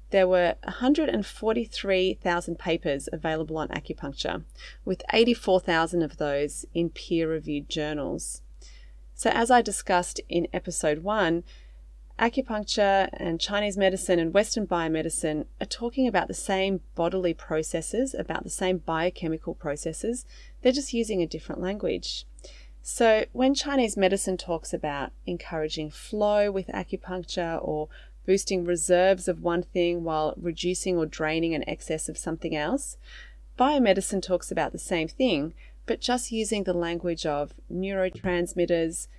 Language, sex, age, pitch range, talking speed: English, female, 30-49, 160-195 Hz, 130 wpm